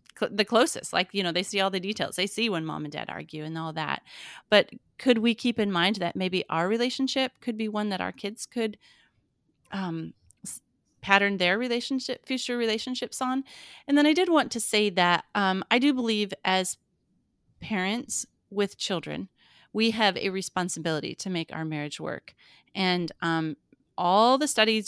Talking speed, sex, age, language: 180 wpm, female, 30-49, English